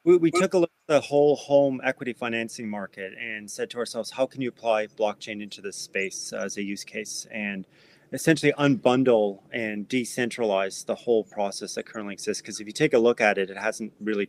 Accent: American